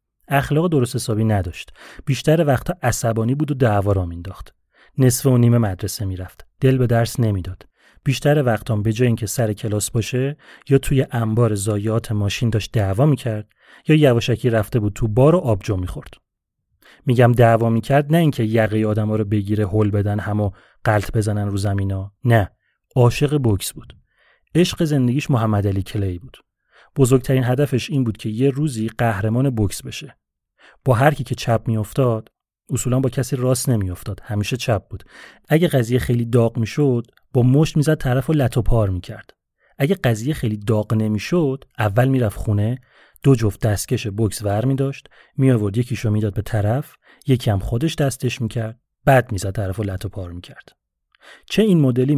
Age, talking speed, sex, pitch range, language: 30-49, 160 wpm, male, 105-135 Hz, Persian